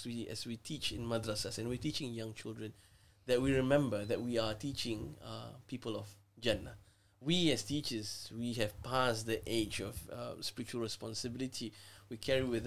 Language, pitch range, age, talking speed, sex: English, 105-145 Hz, 20-39, 170 wpm, male